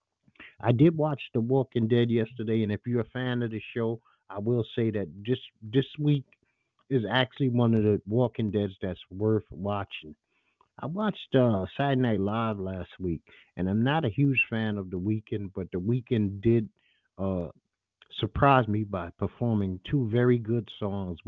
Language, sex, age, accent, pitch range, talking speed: English, male, 50-69, American, 100-125 Hz, 175 wpm